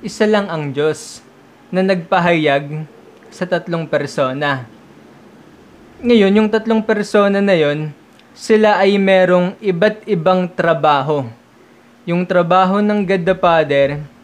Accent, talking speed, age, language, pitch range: native, 110 wpm, 20-39, Filipino, 155-195 Hz